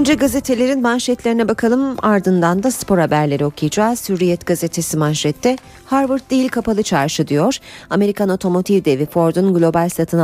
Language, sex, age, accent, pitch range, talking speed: Turkish, female, 40-59, native, 160-210 Hz, 135 wpm